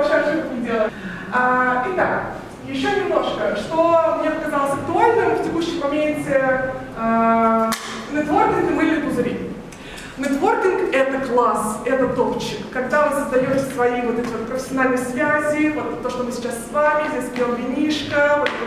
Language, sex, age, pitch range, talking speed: Russian, female, 20-39, 240-295 Hz, 145 wpm